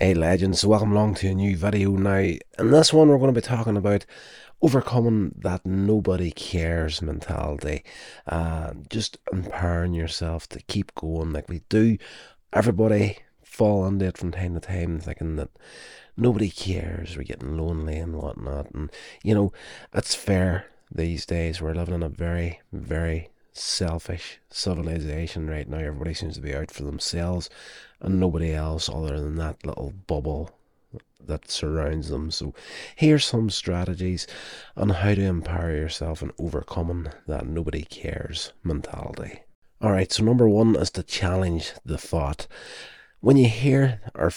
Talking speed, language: 155 wpm, English